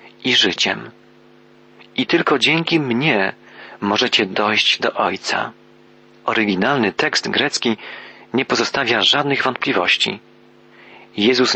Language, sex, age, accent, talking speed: Polish, male, 40-59, native, 95 wpm